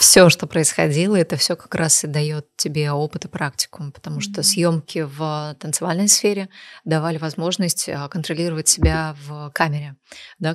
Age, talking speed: 20-39, 150 wpm